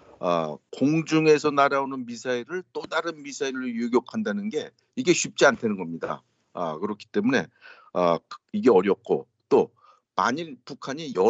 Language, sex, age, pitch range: Korean, male, 60-79, 120-190 Hz